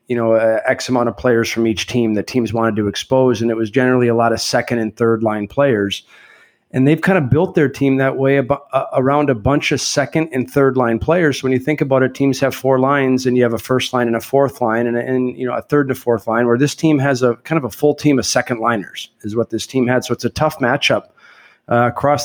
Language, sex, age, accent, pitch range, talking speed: English, male, 40-59, American, 115-135 Hz, 270 wpm